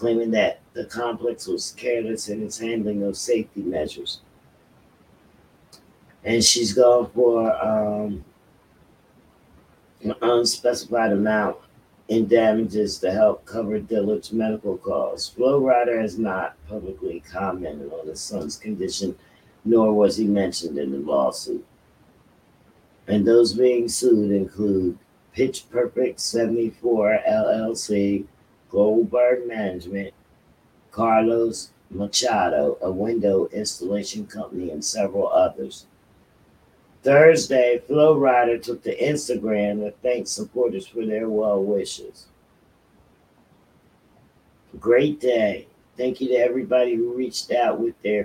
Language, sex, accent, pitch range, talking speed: English, male, American, 105-120 Hz, 110 wpm